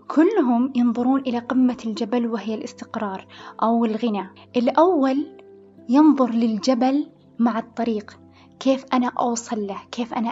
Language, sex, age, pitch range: Arabic, female, 20-39, 220-255 Hz